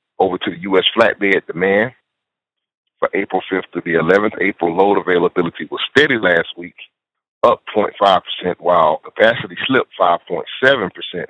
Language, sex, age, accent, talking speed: English, male, 40-59, American, 125 wpm